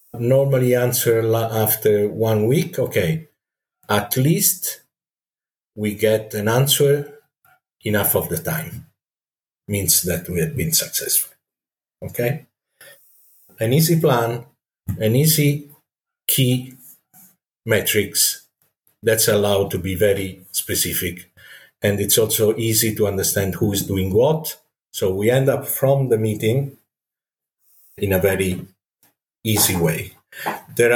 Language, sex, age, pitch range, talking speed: English, male, 50-69, 95-125 Hz, 115 wpm